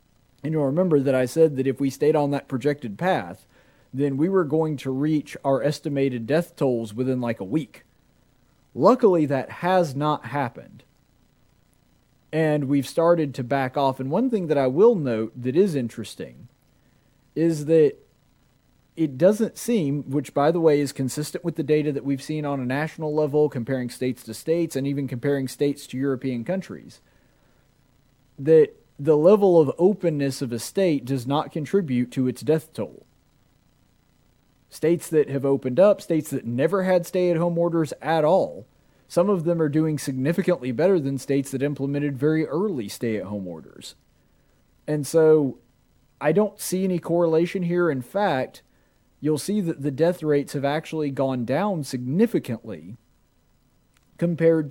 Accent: American